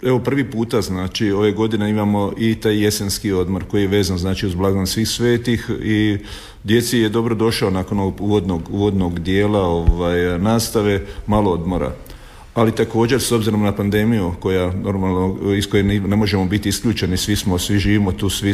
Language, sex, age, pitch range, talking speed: Croatian, male, 50-69, 95-105 Hz, 175 wpm